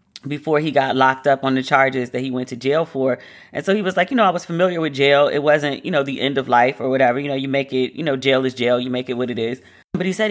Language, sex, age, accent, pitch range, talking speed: English, female, 30-49, American, 130-180 Hz, 320 wpm